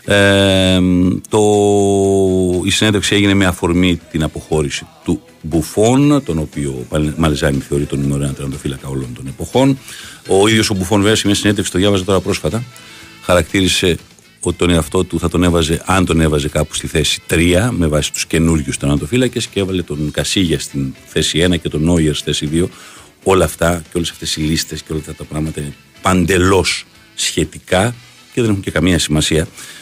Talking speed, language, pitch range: 170 wpm, Greek, 75-95 Hz